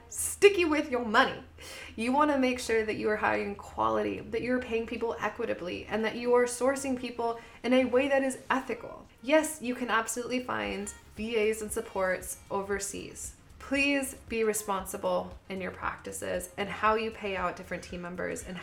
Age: 20-39